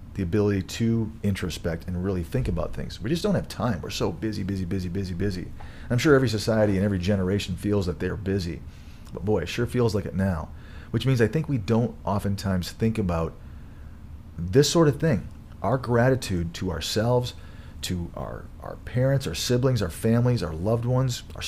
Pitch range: 85-115 Hz